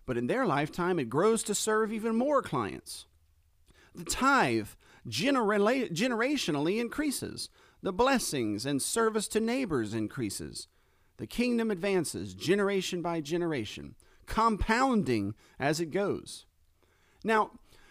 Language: English